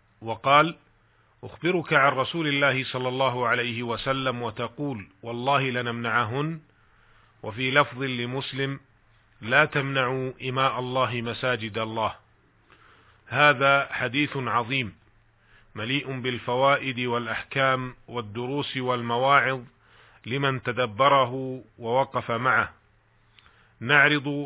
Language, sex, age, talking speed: Arabic, male, 40-59, 85 wpm